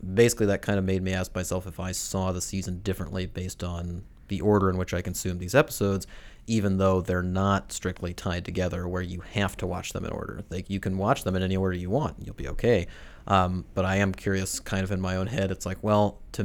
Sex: male